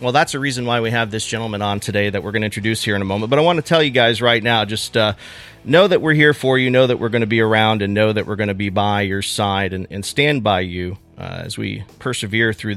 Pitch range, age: 105-145 Hz, 40-59